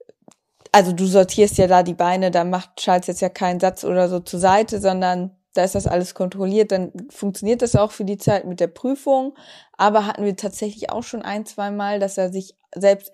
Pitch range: 190-225 Hz